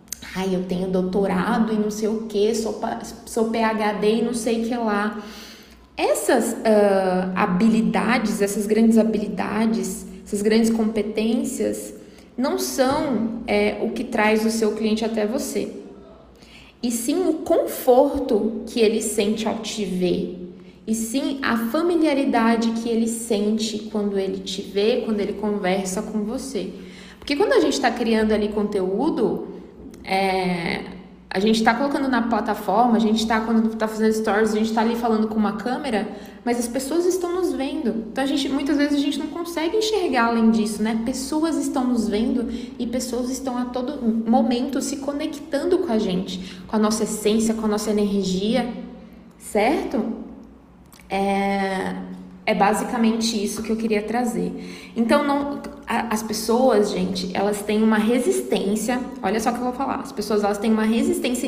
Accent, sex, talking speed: Brazilian, female, 160 wpm